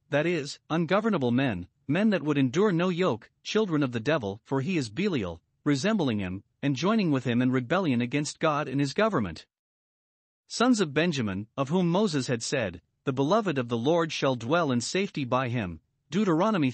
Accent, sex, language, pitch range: American, male, English, 130-180 Hz